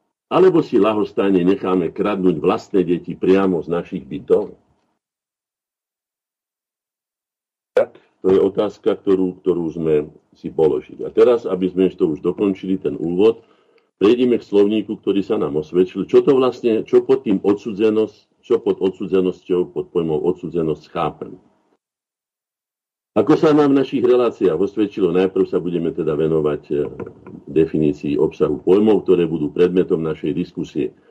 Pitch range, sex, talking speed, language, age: 90-115 Hz, male, 135 wpm, Slovak, 50-69